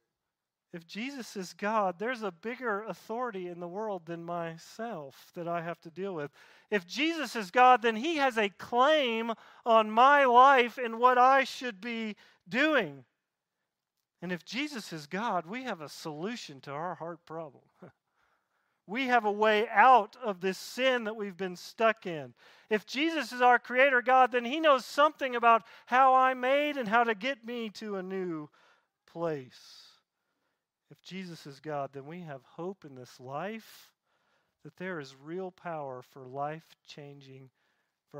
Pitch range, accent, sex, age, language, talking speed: 160-230 Hz, American, male, 40-59, English, 165 wpm